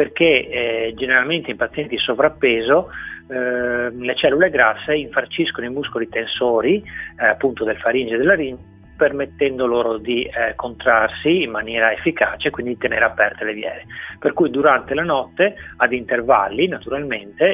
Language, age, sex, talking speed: Italian, 30-49, male, 145 wpm